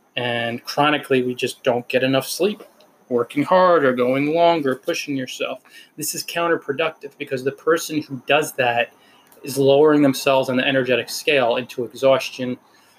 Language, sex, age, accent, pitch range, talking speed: English, male, 20-39, American, 120-145 Hz, 150 wpm